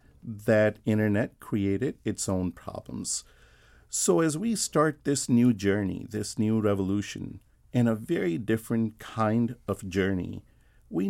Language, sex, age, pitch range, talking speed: English, male, 50-69, 100-120 Hz, 130 wpm